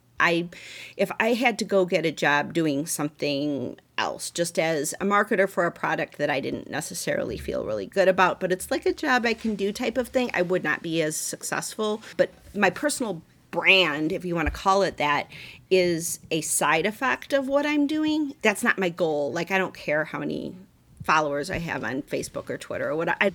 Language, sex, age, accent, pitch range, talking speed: English, female, 40-59, American, 165-225 Hz, 215 wpm